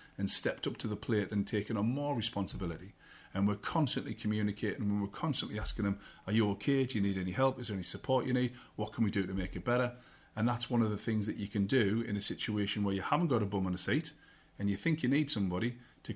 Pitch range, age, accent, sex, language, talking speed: 100-125 Hz, 40-59, British, male, English, 265 wpm